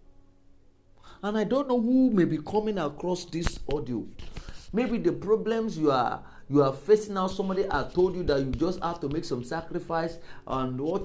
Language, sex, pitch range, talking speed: English, male, 120-185 Hz, 185 wpm